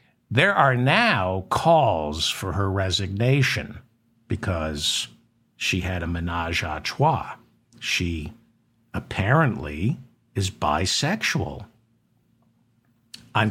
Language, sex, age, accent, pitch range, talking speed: English, male, 60-79, American, 100-140 Hz, 85 wpm